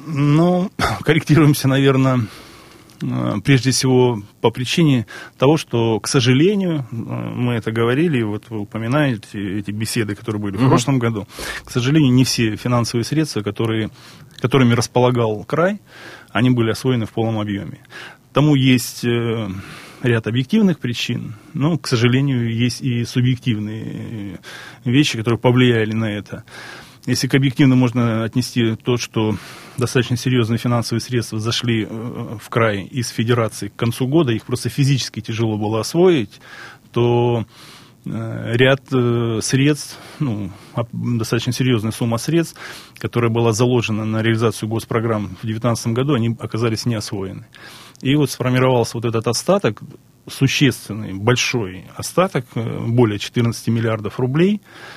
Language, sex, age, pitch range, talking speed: Russian, male, 20-39, 115-130 Hz, 125 wpm